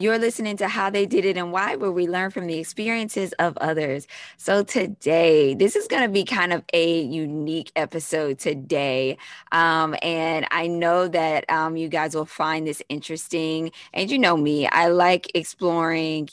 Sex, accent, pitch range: female, American, 155-185 Hz